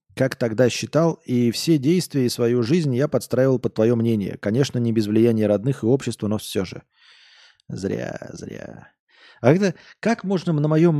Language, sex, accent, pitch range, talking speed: Russian, male, native, 105-145 Hz, 170 wpm